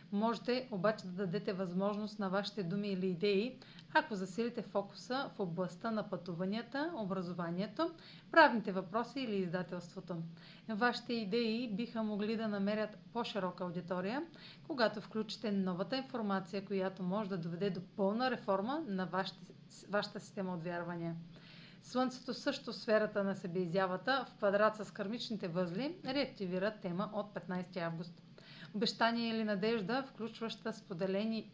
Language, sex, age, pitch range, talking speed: Bulgarian, female, 40-59, 185-225 Hz, 125 wpm